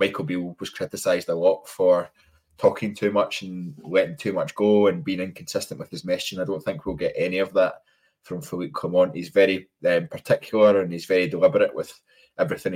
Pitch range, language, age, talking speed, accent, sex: 90-145 Hz, English, 20-39, 200 wpm, British, male